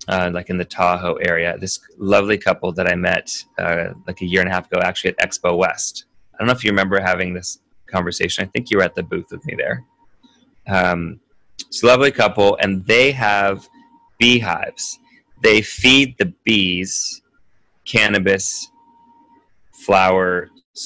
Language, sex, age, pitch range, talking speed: English, male, 20-39, 95-110 Hz, 165 wpm